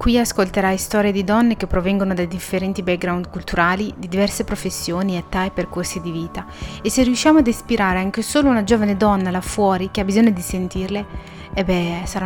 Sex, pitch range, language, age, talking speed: female, 185-225 Hz, Italian, 30-49, 190 wpm